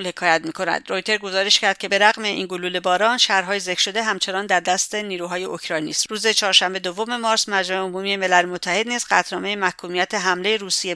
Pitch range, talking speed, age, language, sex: 180-215 Hz, 175 wpm, 50-69, English, female